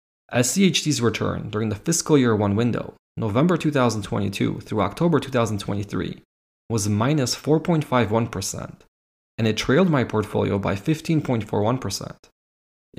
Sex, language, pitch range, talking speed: male, English, 105-135 Hz, 105 wpm